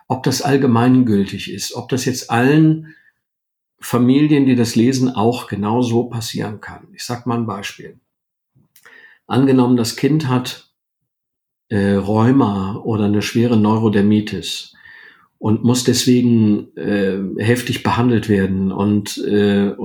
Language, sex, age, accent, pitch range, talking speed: German, male, 50-69, German, 110-135 Hz, 125 wpm